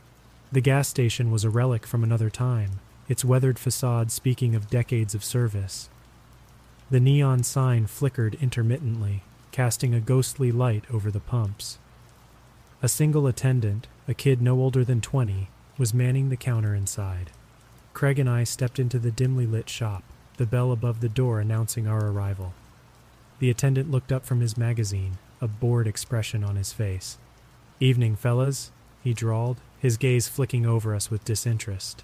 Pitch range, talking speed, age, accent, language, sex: 110-130 Hz, 155 wpm, 30-49, American, English, male